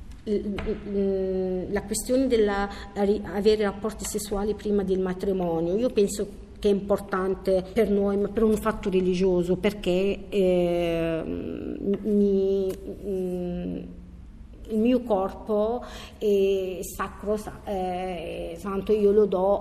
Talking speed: 105 wpm